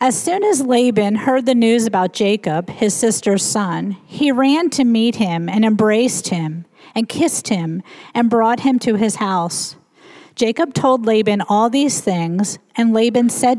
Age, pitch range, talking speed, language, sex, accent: 40-59, 185-245 Hz, 170 wpm, English, female, American